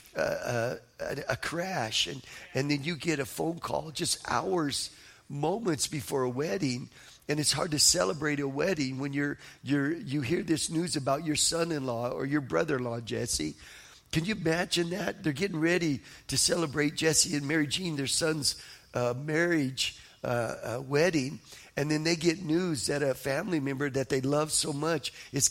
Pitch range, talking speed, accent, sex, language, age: 135-170 Hz, 175 wpm, American, male, English, 50-69